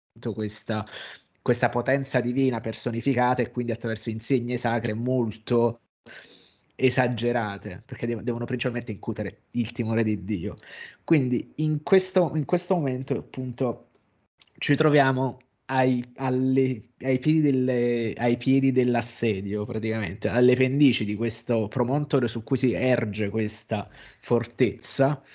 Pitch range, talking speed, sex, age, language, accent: 115-145 Hz, 105 wpm, male, 20-39, Italian, native